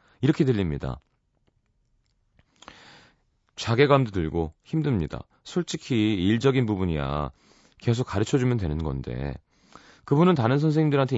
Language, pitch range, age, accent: Korean, 85-135 Hz, 30-49, native